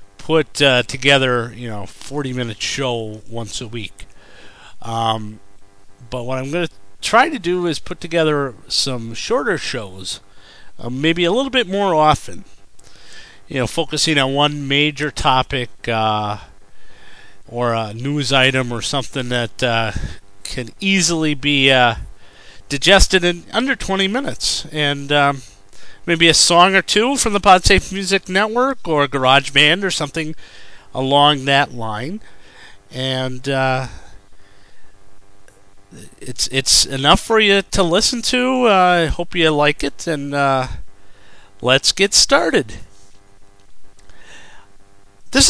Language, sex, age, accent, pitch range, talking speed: English, male, 40-59, American, 105-165 Hz, 130 wpm